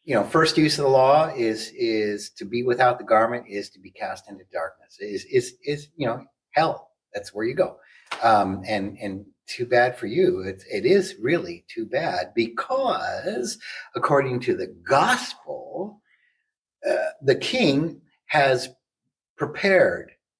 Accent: American